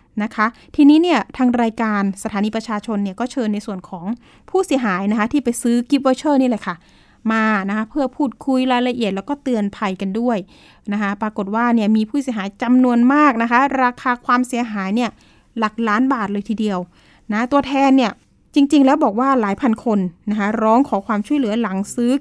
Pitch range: 215-270 Hz